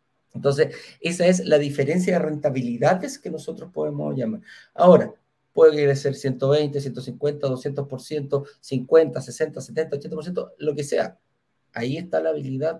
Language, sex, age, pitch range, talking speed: Spanish, male, 40-59, 130-185 Hz, 120 wpm